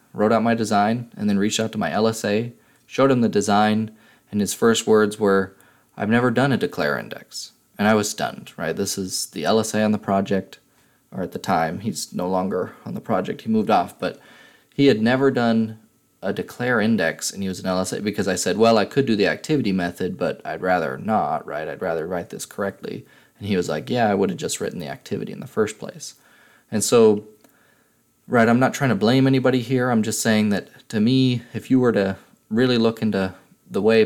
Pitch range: 100-115 Hz